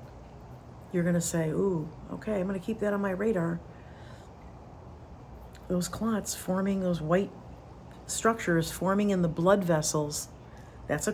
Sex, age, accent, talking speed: female, 50-69, American, 135 wpm